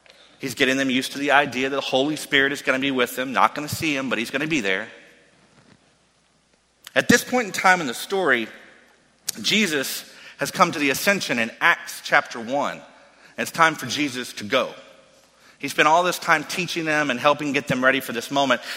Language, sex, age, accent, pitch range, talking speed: English, male, 40-59, American, 130-170 Hz, 215 wpm